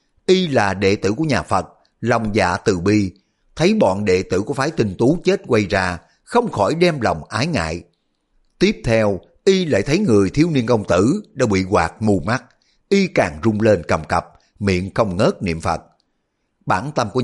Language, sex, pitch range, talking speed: Vietnamese, male, 100-130 Hz, 200 wpm